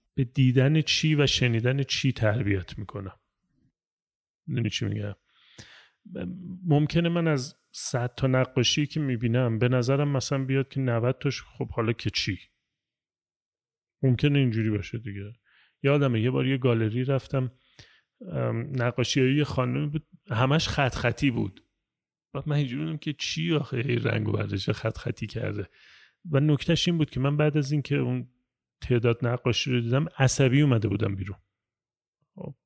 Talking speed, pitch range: 145 wpm, 115-145 Hz